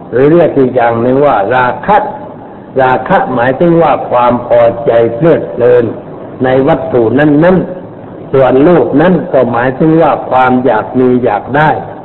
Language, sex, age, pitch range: Thai, male, 60-79, 120-150 Hz